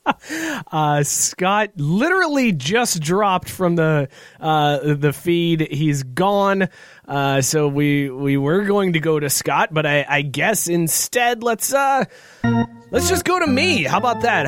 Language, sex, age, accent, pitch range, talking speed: English, male, 30-49, American, 125-165 Hz, 155 wpm